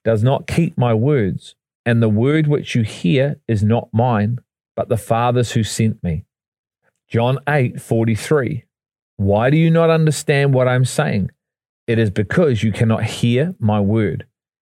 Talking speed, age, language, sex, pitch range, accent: 165 wpm, 40-59, English, male, 110-140 Hz, Australian